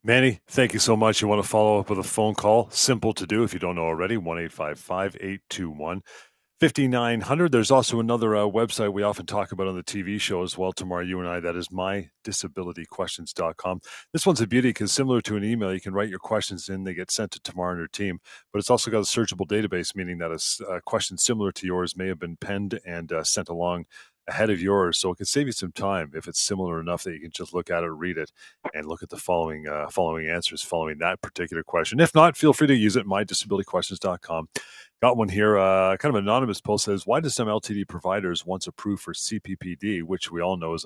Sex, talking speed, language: male, 235 wpm, English